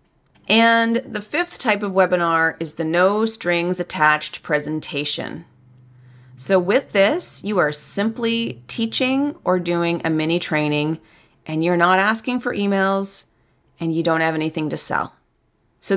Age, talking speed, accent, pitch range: 30-49, 130 wpm, American, 160-215 Hz